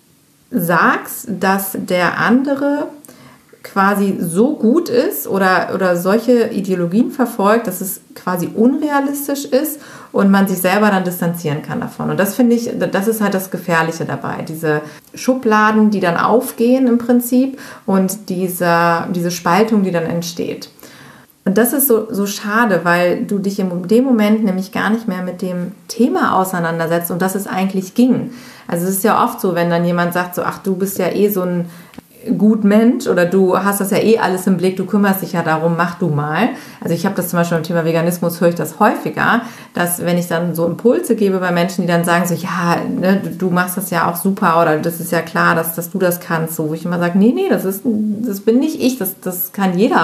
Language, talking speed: German, 205 wpm